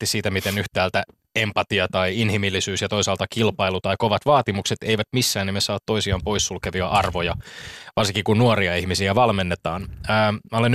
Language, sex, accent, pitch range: Finnish, male, native, 95-115 Hz